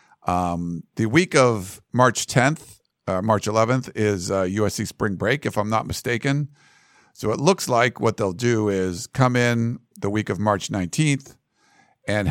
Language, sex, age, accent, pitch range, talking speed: English, male, 50-69, American, 100-130 Hz, 165 wpm